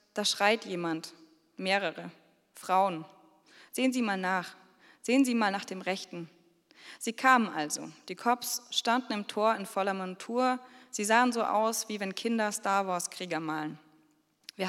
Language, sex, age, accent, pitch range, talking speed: German, female, 20-39, German, 180-235 Hz, 155 wpm